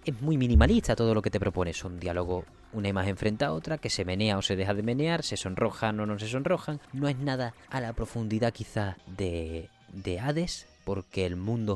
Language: Spanish